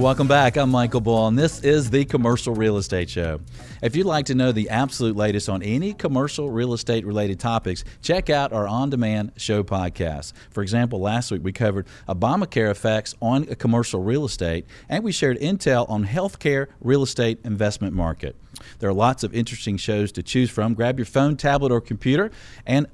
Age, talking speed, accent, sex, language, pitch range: 40-59, 190 wpm, American, male, English, 100-125 Hz